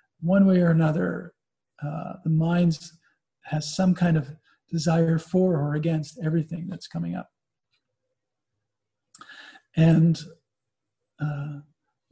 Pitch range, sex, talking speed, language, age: 155-185 Hz, male, 105 wpm, English, 50-69